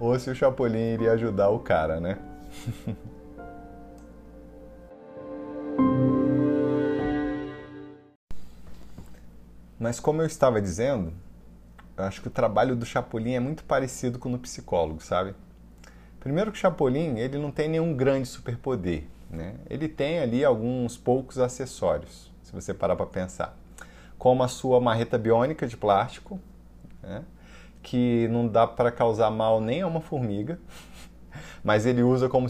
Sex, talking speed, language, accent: male, 135 wpm, Portuguese, Brazilian